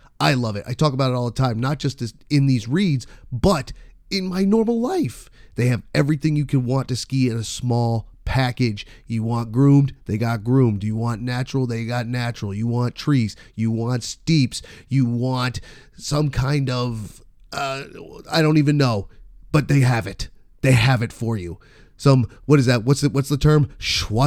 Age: 30-49